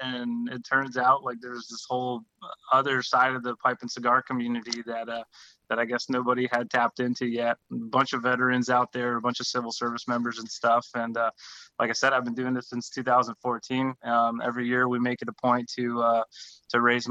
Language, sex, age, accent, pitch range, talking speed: English, male, 20-39, American, 115-125 Hz, 220 wpm